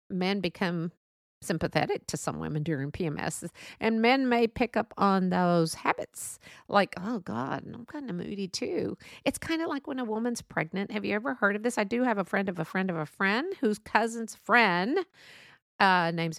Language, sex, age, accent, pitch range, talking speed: English, female, 50-69, American, 160-220 Hz, 200 wpm